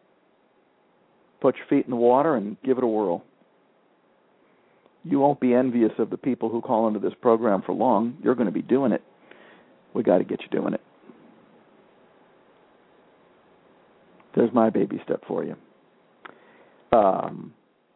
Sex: male